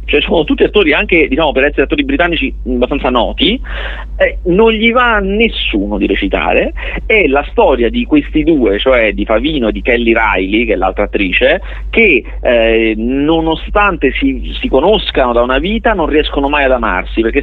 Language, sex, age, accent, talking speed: Italian, male, 40-59, native, 180 wpm